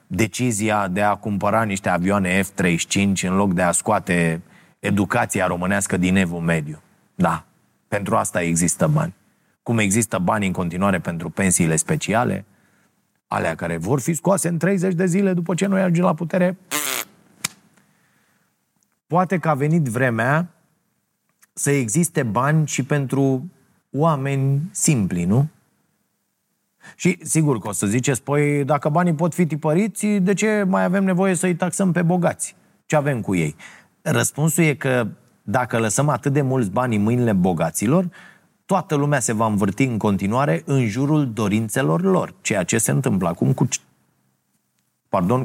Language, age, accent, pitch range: Romanian, 30-49, native, 105-160 Hz